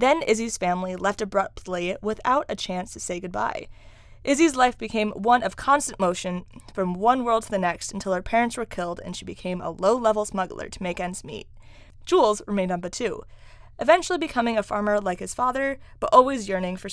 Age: 20-39